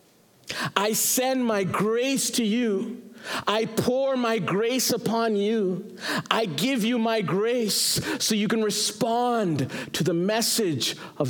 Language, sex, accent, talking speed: English, male, American, 135 wpm